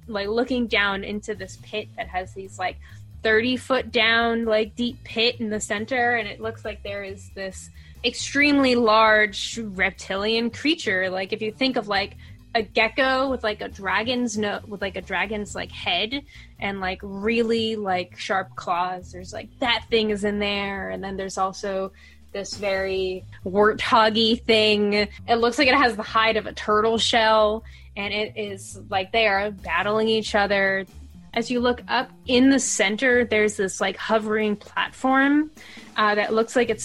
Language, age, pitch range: English, 10-29, 190-230 Hz